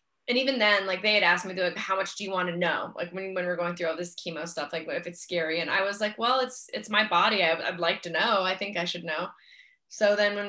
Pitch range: 175-215 Hz